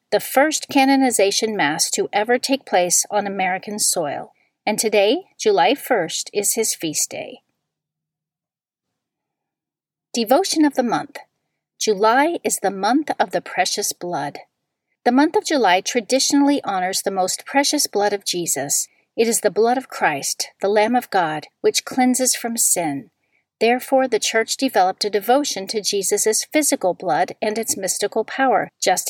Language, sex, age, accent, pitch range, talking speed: English, female, 40-59, American, 195-270 Hz, 150 wpm